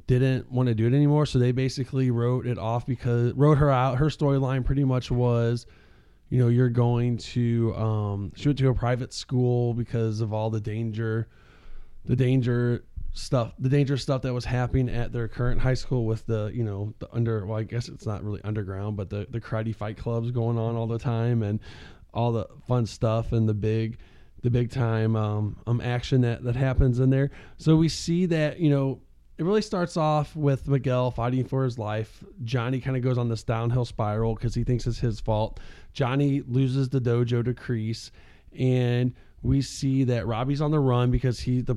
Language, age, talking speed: English, 20-39, 205 wpm